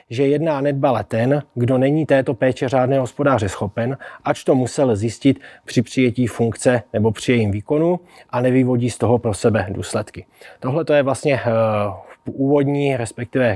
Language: Czech